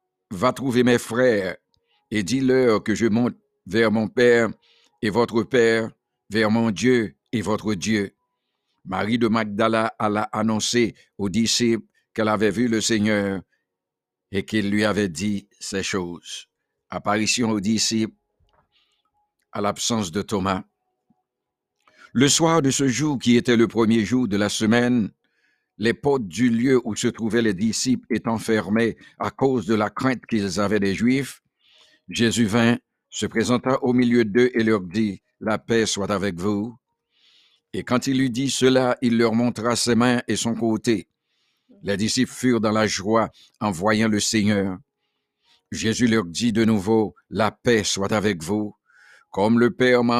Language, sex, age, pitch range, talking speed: English, male, 60-79, 105-120 Hz, 165 wpm